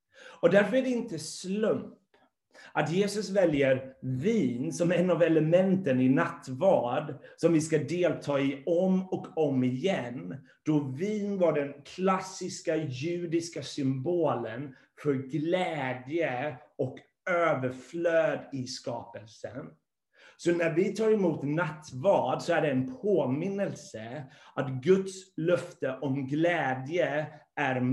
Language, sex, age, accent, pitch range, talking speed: Swedish, male, 30-49, native, 130-175 Hz, 120 wpm